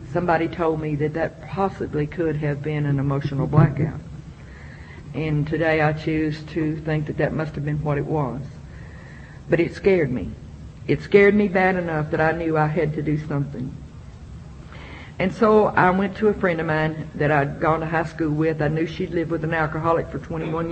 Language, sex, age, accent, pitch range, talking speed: English, female, 50-69, American, 145-170 Hz, 195 wpm